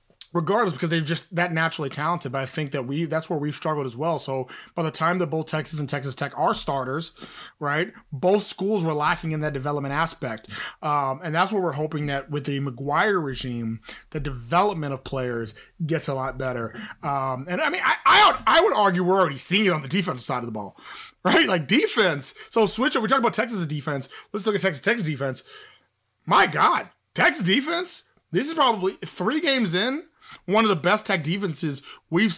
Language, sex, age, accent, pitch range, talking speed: English, male, 20-39, American, 145-190 Hz, 210 wpm